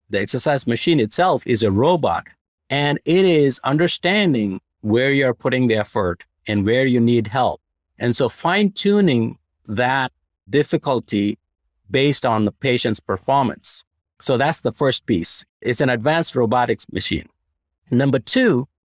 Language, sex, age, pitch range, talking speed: English, male, 50-69, 105-145 Hz, 140 wpm